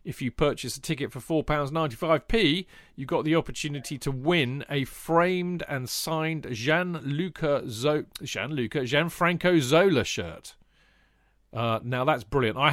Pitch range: 125-170 Hz